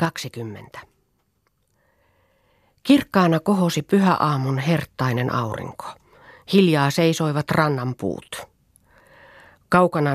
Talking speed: 65 wpm